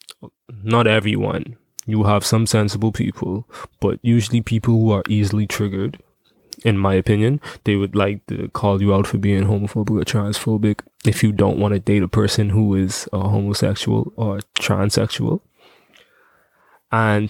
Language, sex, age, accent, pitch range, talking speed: English, male, 20-39, American, 100-115 Hz, 155 wpm